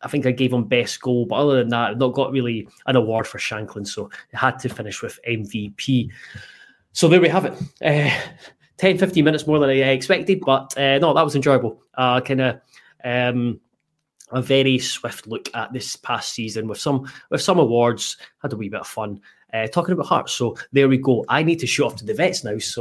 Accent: British